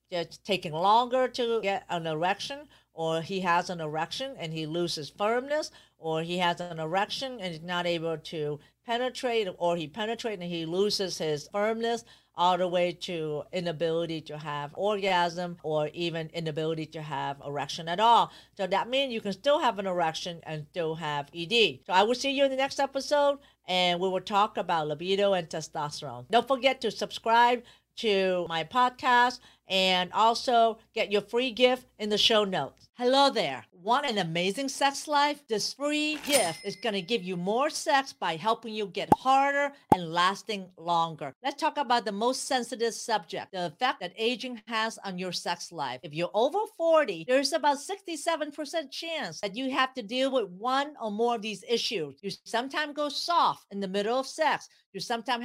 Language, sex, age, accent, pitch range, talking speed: English, female, 50-69, American, 175-260 Hz, 185 wpm